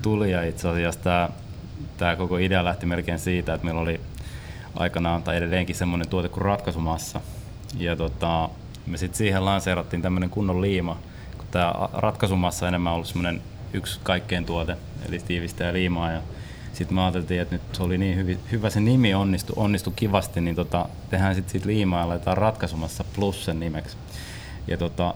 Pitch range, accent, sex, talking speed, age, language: 85-110 Hz, native, male, 170 wpm, 30-49, Finnish